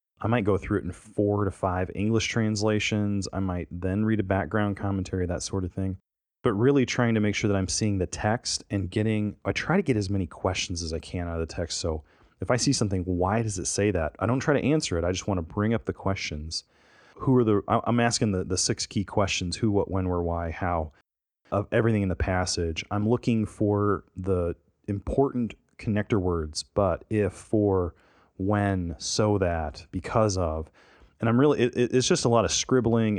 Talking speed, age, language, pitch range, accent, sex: 215 wpm, 30-49, English, 90-110 Hz, American, male